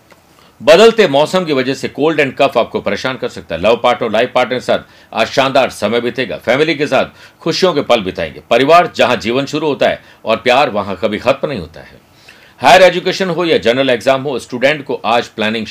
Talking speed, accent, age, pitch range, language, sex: 215 wpm, native, 50-69, 115-150 Hz, Hindi, male